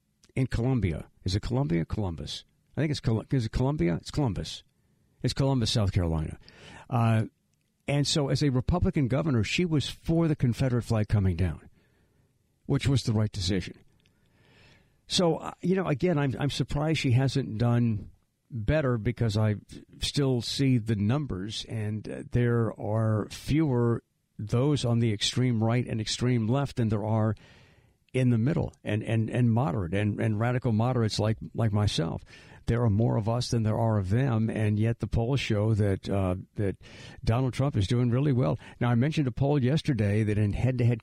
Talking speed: 180 wpm